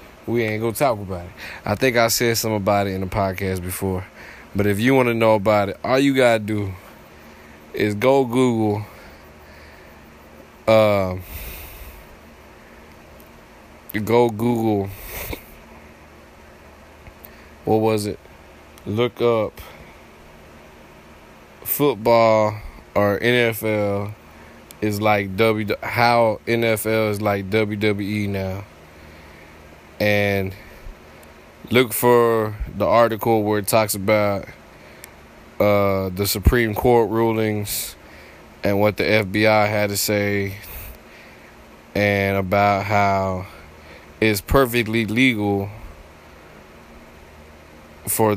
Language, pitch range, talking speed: English, 75-110 Hz, 100 wpm